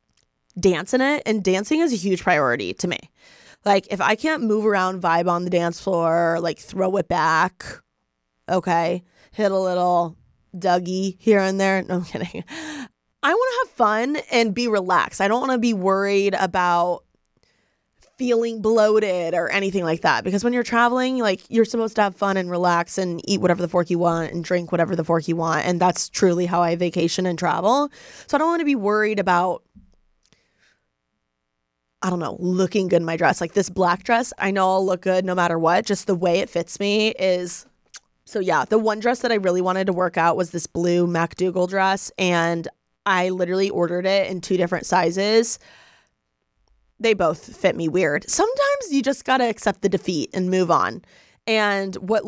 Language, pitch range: English, 175-215 Hz